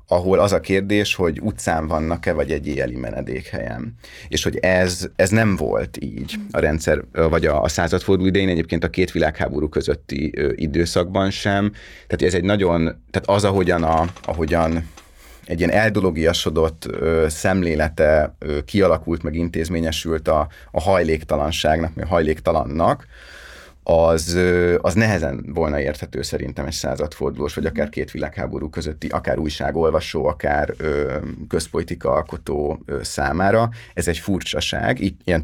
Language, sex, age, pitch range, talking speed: Hungarian, male, 30-49, 80-95 Hz, 130 wpm